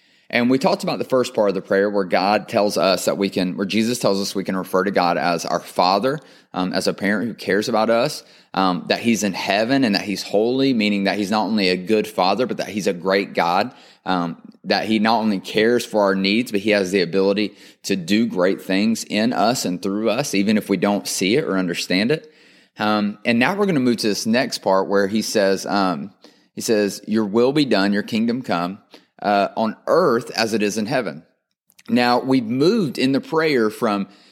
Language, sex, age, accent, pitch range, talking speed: English, male, 30-49, American, 100-120 Hz, 230 wpm